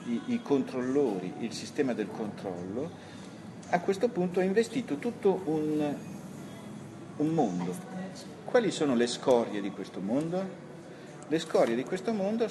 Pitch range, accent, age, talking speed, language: 130-200 Hz, native, 50-69, 135 wpm, Italian